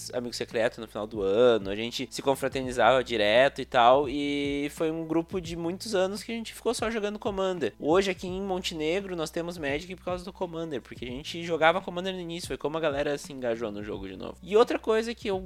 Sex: male